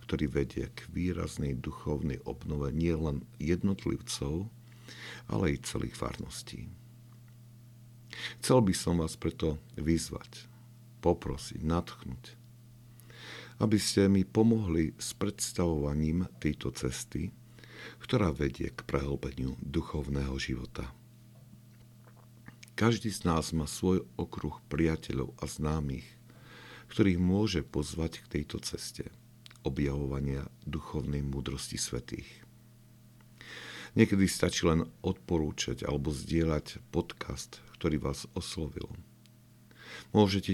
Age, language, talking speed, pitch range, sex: 50-69, Slovak, 95 wpm, 75-115 Hz, male